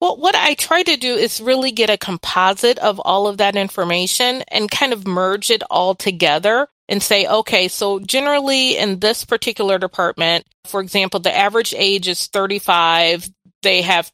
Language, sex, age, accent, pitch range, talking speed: English, female, 30-49, American, 180-220 Hz, 175 wpm